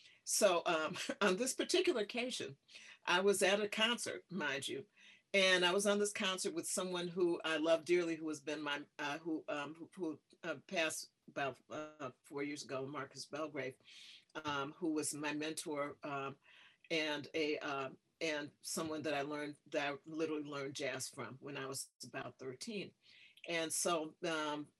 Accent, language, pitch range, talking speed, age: American, English, 145-195 Hz, 170 wpm, 50-69